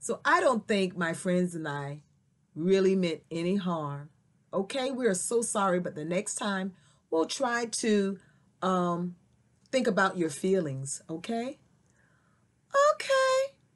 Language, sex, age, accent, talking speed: English, female, 40-59, American, 135 wpm